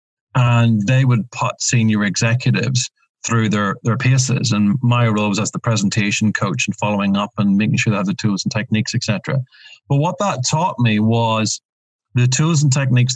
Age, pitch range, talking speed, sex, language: 40-59, 115-135 Hz, 185 wpm, male, English